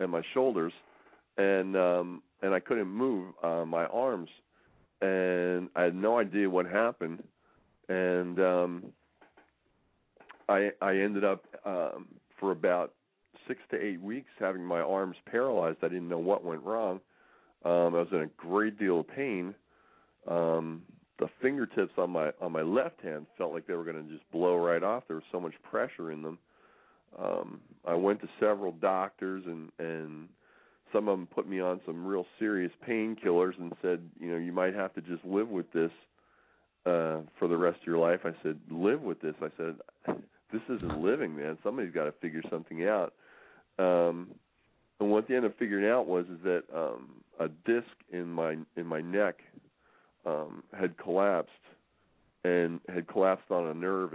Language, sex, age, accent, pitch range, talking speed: English, male, 40-59, American, 85-95 Hz, 175 wpm